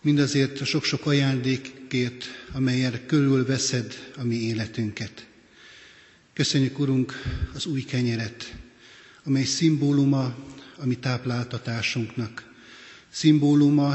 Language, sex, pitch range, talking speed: Hungarian, male, 125-140 Hz, 85 wpm